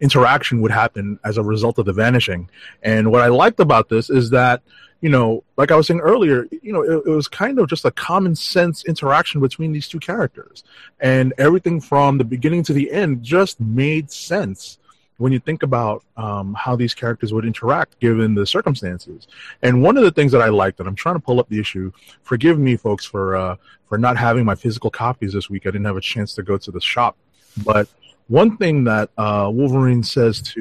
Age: 30-49